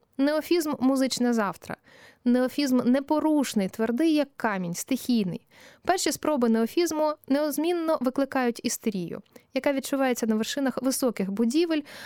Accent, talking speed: native, 115 wpm